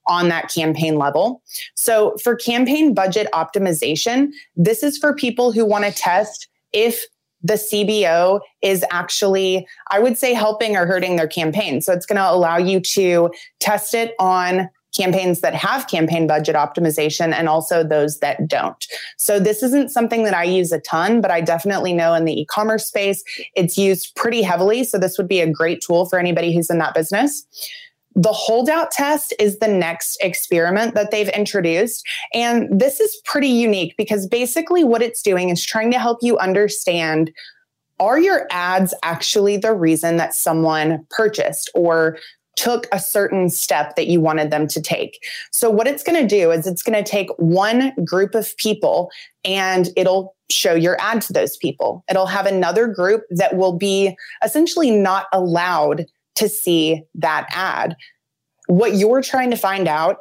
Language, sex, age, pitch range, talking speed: English, female, 30-49, 170-230 Hz, 170 wpm